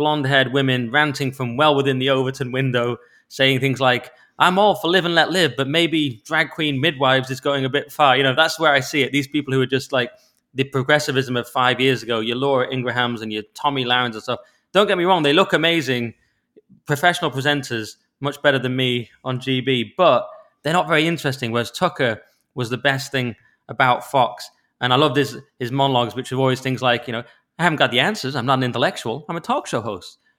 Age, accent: 20-39, British